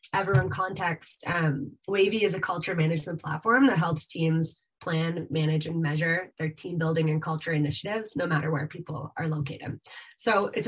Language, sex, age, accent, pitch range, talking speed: English, female, 20-39, American, 160-190 Hz, 175 wpm